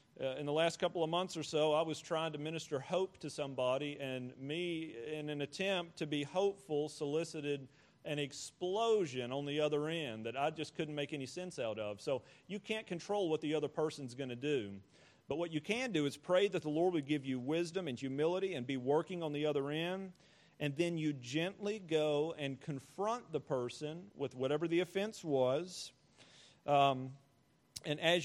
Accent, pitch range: American, 140-170 Hz